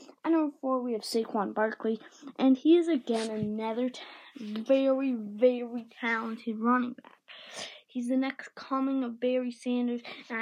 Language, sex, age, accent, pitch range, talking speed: English, female, 20-39, American, 225-270 Hz, 150 wpm